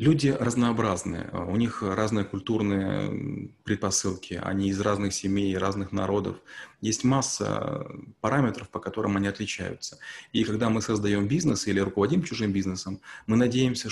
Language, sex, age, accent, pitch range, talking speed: Russian, male, 30-49, native, 95-115 Hz, 135 wpm